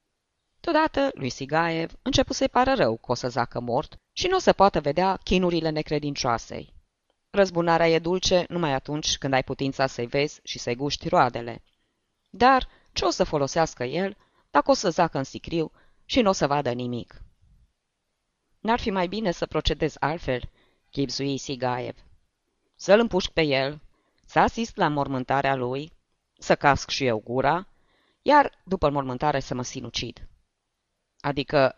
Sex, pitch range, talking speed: female, 120-165 Hz, 155 wpm